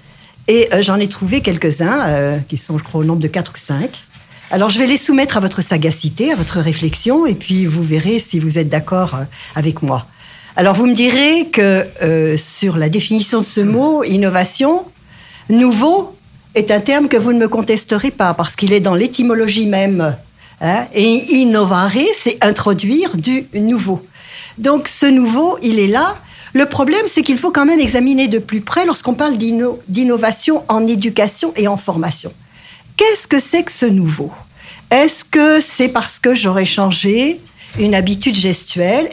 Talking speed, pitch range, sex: 175 wpm, 180-245 Hz, female